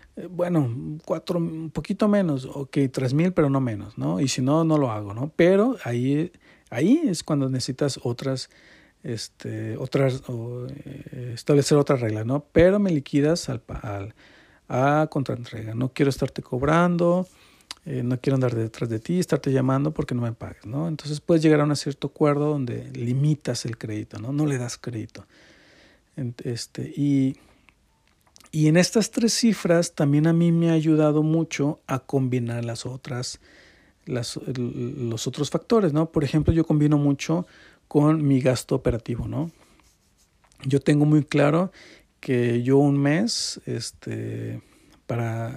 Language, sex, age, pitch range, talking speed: Spanish, male, 50-69, 125-155 Hz, 155 wpm